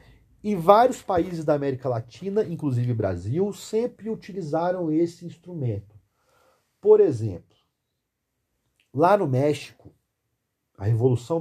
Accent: Brazilian